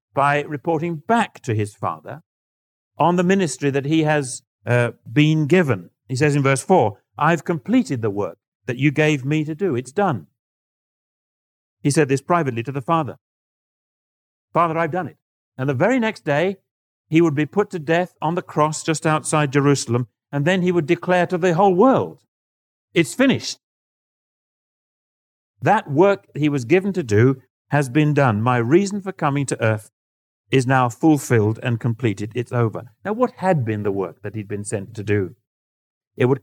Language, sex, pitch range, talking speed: English, male, 120-170 Hz, 180 wpm